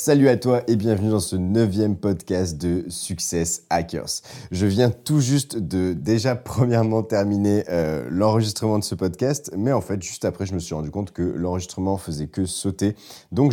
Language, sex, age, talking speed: French, male, 30-49, 180 wpm